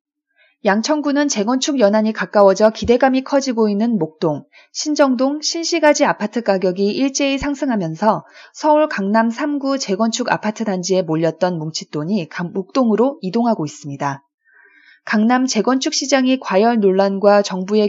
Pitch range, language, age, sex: 190-270 Hz, Korean, 20-39, female